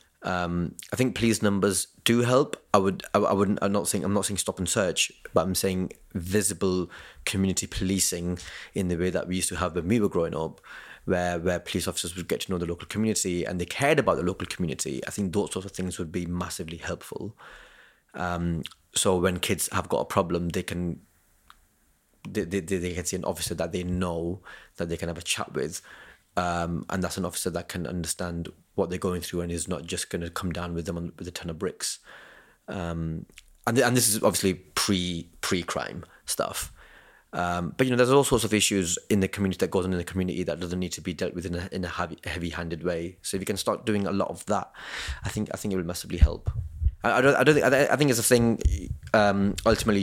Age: 20-39